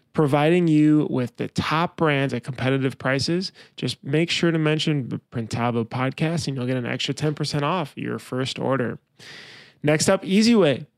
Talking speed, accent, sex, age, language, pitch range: 165 wpm, American, male, 20-39, English, 135-165 Hz